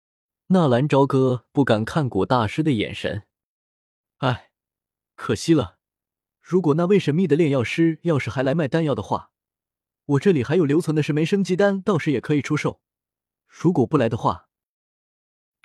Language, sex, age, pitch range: Chinese, male, 20-39, 115-165 Hz